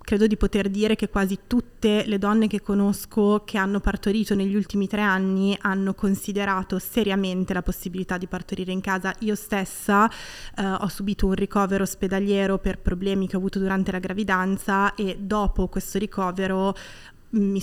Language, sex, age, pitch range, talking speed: Italian, female, 20-39, 190-210 Hz, 165 wpm